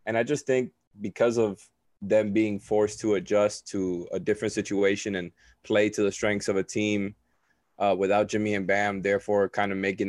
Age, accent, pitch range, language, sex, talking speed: 20-39, American, 100-115 Hz, English, male, 190 wpm